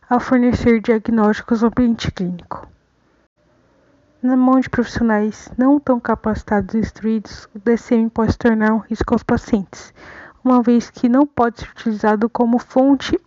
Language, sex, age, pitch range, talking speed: Portuguese, female, 20-39, 220-250 Hz, 150 wpm